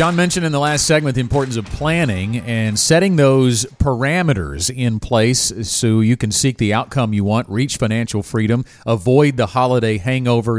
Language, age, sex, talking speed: English, 40-59, male, 175 wpm